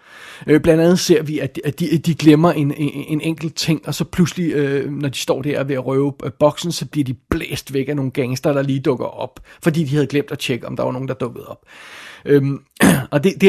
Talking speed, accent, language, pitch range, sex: 235 wpm, native, Danish, 145-175 Hz, male